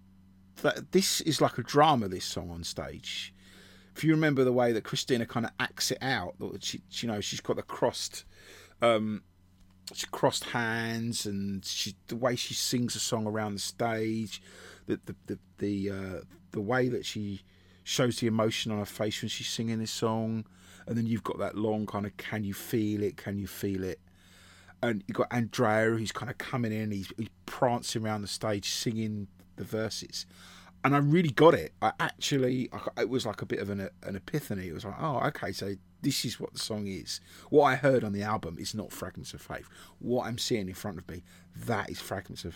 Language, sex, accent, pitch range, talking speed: English, male, British, 95-115 Hz, 210 wpm